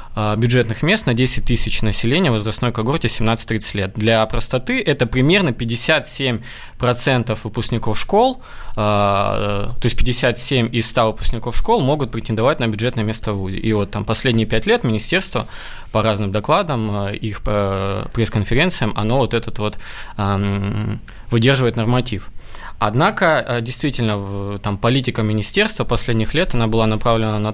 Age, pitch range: 20-39, 105-125 Hz